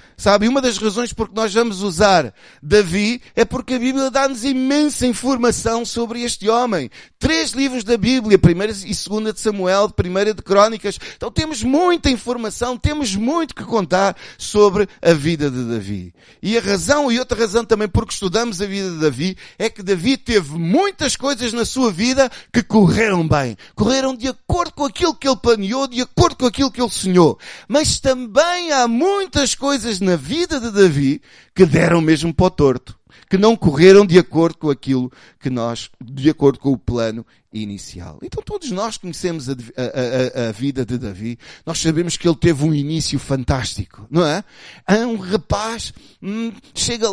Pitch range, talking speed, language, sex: 185-255 Hz, 175 wpm, Portuguese, male